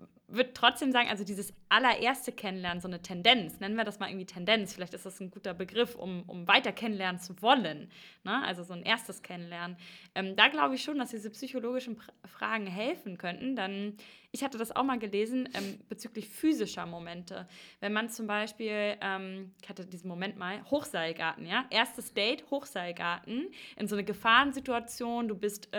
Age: 20-39